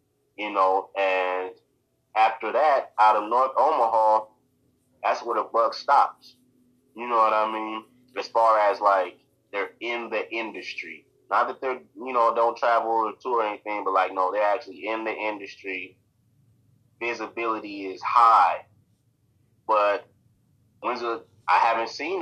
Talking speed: 150 wpm